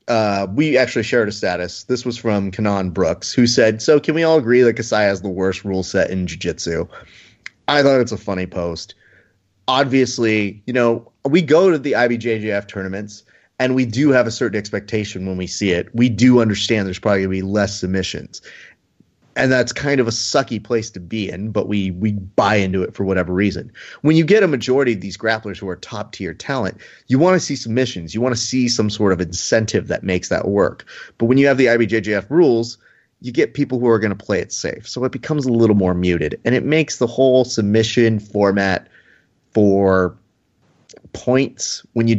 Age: 30-49